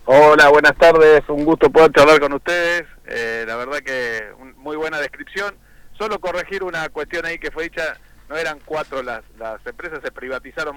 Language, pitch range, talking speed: Spanish, 125-155 Hz, 185 wpm